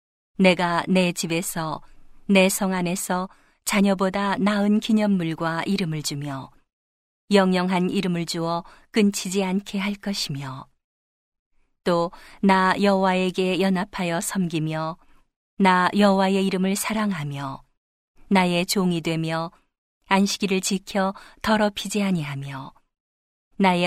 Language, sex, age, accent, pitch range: Korean, female, 40-59, native, 165-200 Hz